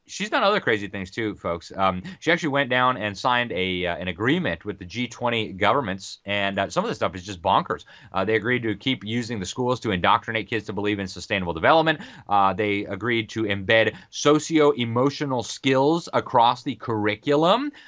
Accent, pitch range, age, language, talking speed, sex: American, 100-135 Hz, 30-49, English, 190 wpm, male